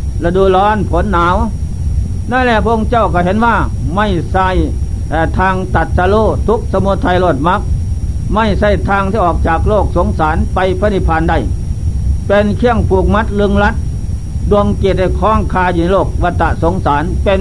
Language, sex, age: Thai, male, 60-79